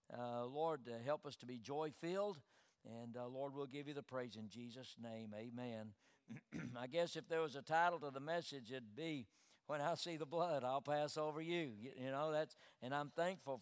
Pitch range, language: 135-165 Hz, English